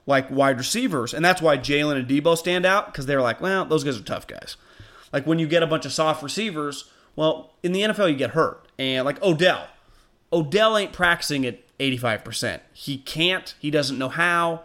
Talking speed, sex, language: 205 wpm, male, English